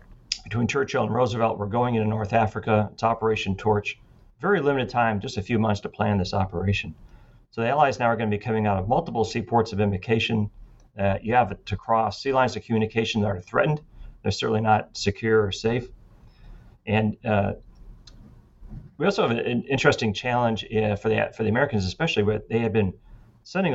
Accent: American